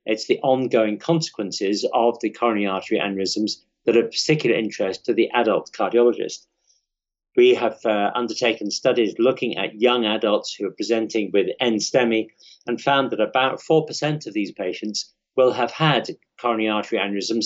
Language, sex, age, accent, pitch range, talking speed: English, male, 50-69, British, 110-130 Hz, 160 wpm